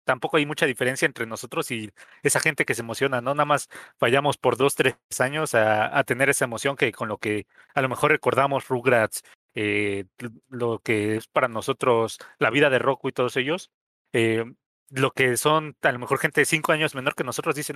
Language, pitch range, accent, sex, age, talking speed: Spanish, 120-155 Hz, Mexican, male, 30-49, 210 wpm